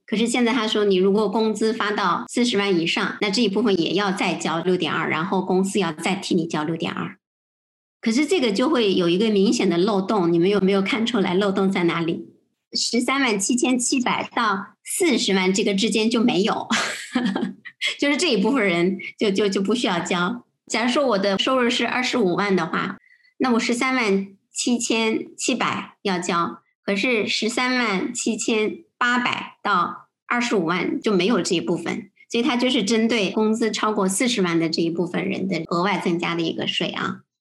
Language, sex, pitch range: Chinese, male, 185-235 Hz